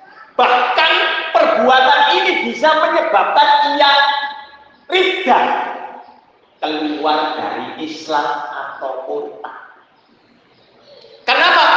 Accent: native